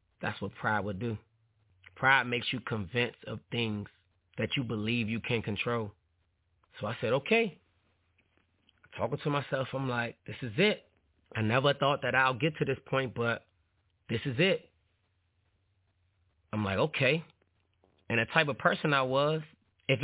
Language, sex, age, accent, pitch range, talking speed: English, male, 20-39, American, 105-135 Hz, 160 wpm